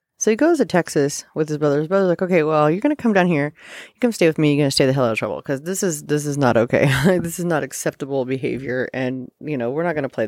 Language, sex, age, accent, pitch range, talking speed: English, female, 30-49, American, 145-200 Hz, 290 wpm